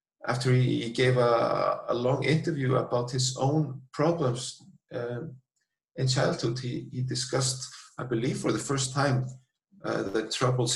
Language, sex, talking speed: English, male, 145 wpm